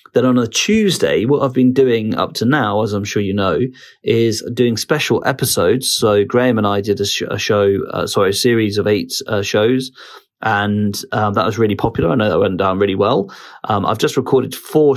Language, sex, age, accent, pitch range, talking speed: English, male, 30-49, British, 105-125 Hz, 220 wpm